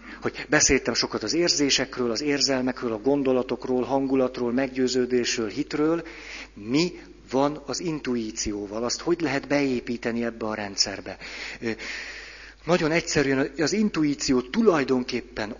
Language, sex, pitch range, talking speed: Hungarian, male, 120-155 Hz, 110 wpm